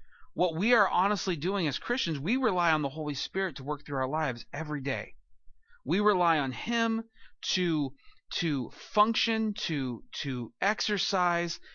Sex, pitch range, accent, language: male, 135-190 Hz, American, English